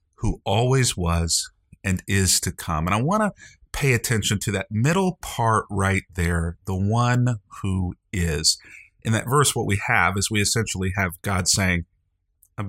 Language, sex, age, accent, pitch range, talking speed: English, male, 40-59, American, 90-110 Hz, 170 wpm